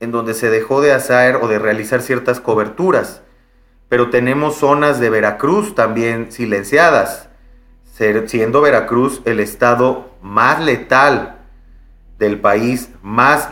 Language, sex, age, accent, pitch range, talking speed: Spanish, male, 30-49, Mexican, 105-130 Hz, 120 wpm